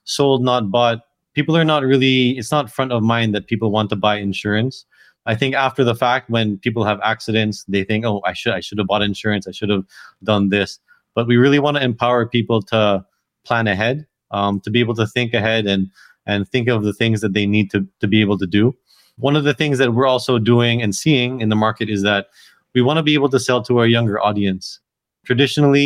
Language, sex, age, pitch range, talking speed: English, male, 20-39, 105-125 Hz, 235 wpm